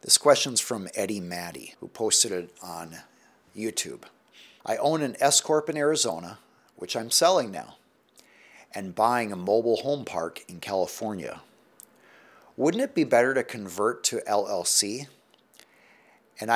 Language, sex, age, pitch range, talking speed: English, male, 50-69, 115-165 Hz, 135 wpm